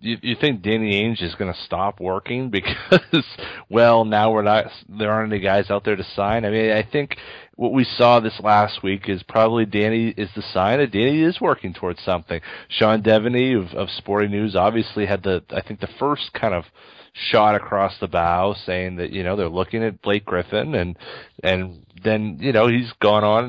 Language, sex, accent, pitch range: English, male, American, 95-110 Hz